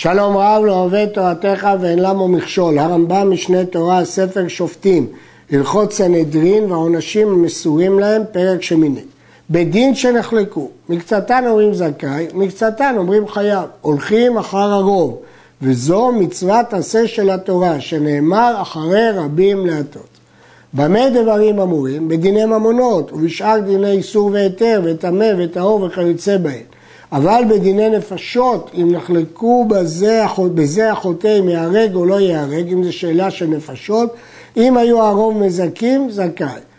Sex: male